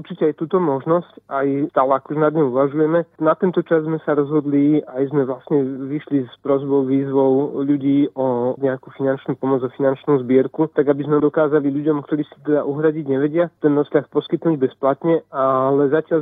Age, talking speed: 40-59, 180 wpm